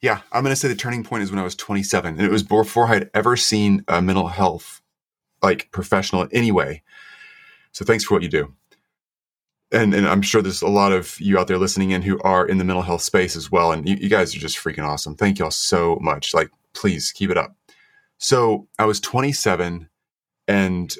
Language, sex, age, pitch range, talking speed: English, male, 30-49, 95-110 Hz, 220 wpm